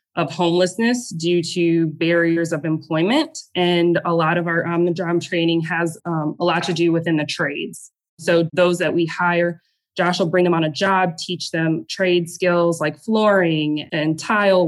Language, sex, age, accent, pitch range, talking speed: English, female, 20-39, American, 160-175 Hz, 185 wpm